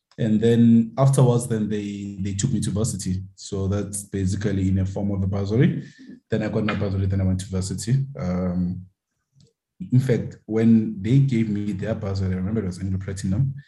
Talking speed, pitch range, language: 190 wpm, 95-120 Hz, English